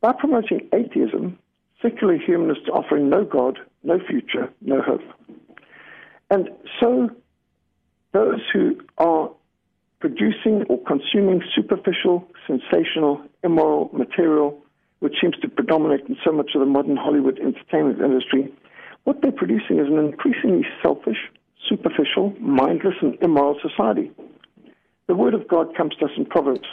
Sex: male